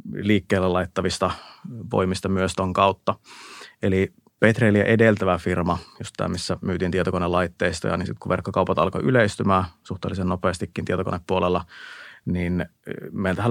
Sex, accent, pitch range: male, native, 90-105 Hz